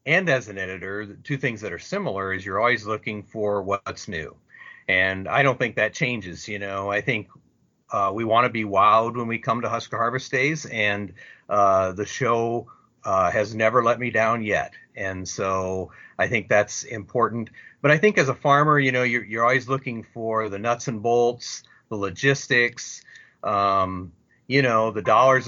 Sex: male